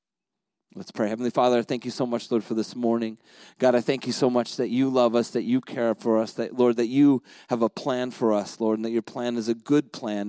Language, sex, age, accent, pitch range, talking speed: English, male, 30-49, American, 115-140 Hz, 270 wpm